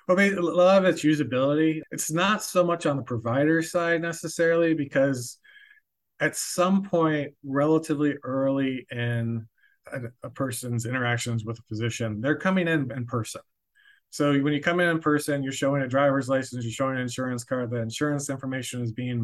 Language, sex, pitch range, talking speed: English, male, 120-145 Hz, 175 wpm